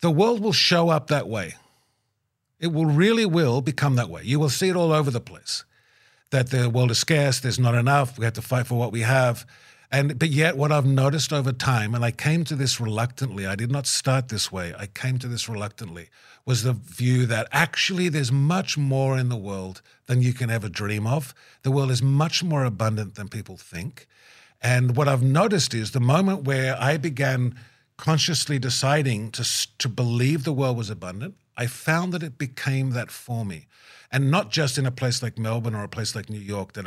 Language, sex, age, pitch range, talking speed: English, male, 50-69, 115-140 Hz, 215 wpm